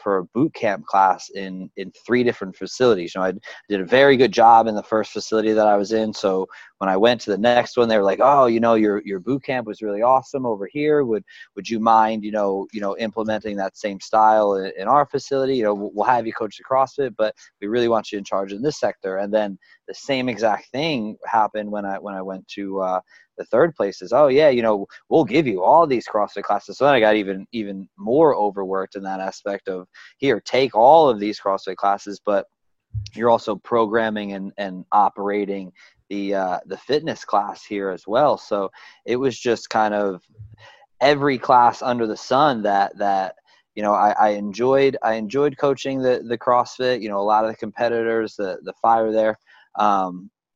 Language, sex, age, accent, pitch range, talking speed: English, male, 20-39, American, 100-115 Hz, 215 wpm